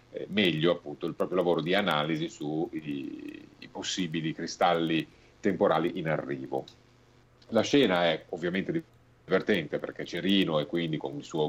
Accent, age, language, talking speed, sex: native, 40-59, Italian, 140 wpm, male